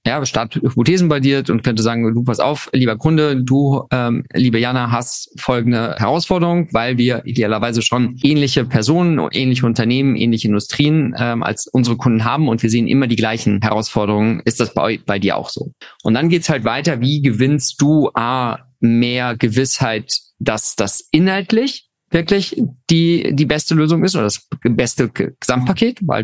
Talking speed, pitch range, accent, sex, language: 170 wpm, 115-140 Hz, German, male, German